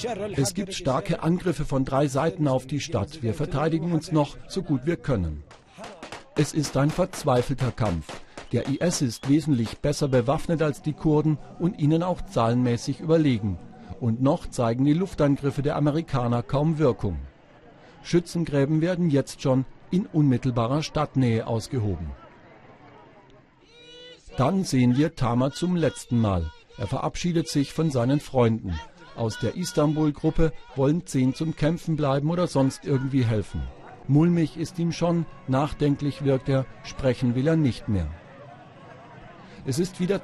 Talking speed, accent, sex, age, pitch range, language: 140 wpm, German, male, 50-69, 125-160 Hz, German